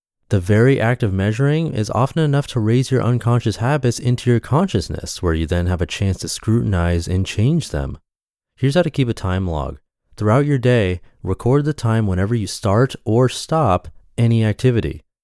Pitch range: 85-115 Hz